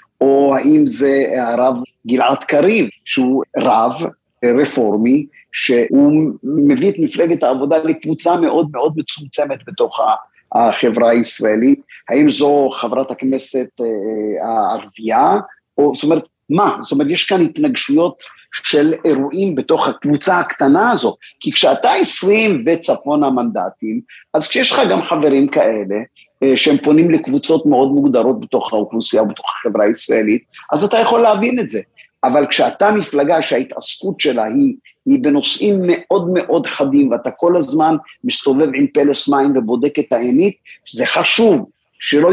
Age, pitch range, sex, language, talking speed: 50-69, 140-225 Hz, male, Hebrew, 130 wpm